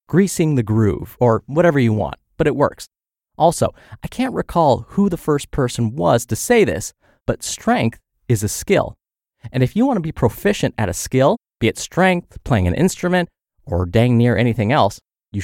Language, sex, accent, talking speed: English, male, American, 190 wpm